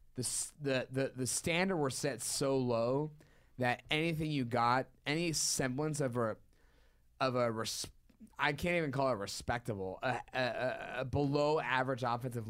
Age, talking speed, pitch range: 20-39, 150 wpm, 110-145 Hz